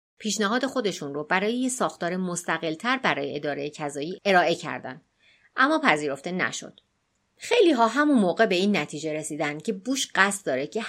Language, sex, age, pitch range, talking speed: Persian, female, 30-49, 150-230 Hz, 160 wpm